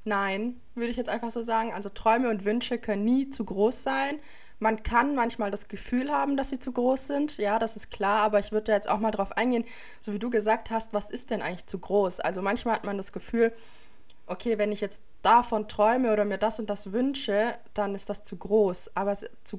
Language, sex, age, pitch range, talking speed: German, female, 20-39, 195-230 Hz, 230 wpm